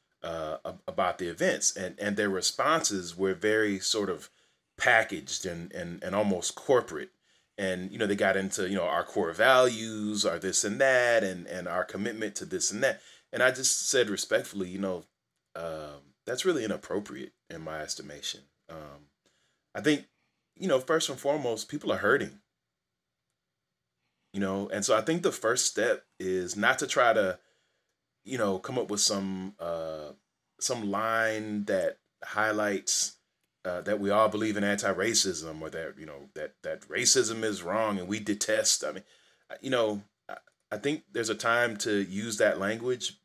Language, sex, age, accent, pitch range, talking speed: English, male, 30-49, American, 95-110 Hz, 170 wpm